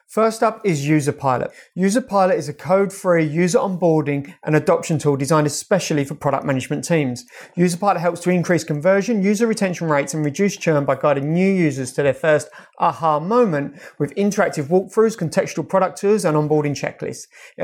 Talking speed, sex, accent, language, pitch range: 165 wpm, male, British, English, 150-190 Hz